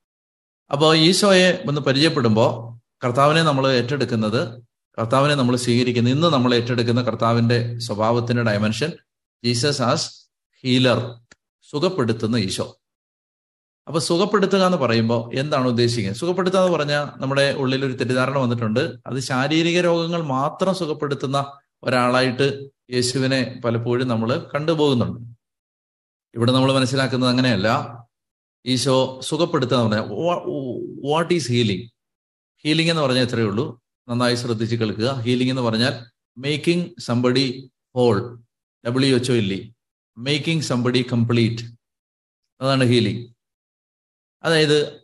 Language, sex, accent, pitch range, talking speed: Malayalam, male, native, 115-140 Hz, 105 wpm